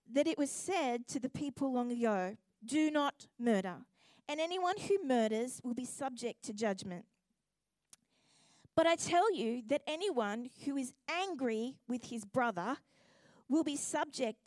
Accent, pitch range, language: Australian, 230-300 Hz, English